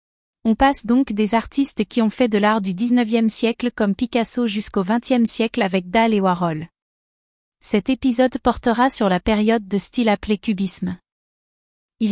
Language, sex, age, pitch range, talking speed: Danish, female, 30-49, 205-245 Hz, 165 wpm